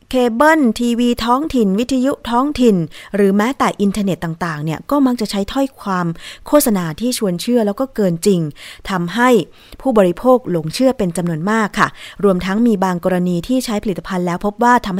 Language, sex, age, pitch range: Thai, female, 20-39, 185-235 Hz